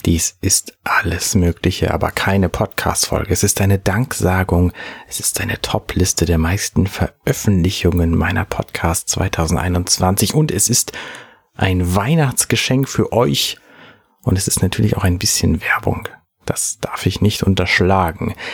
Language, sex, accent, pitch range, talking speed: German, male, German, 90-110 Hz, 135 wpm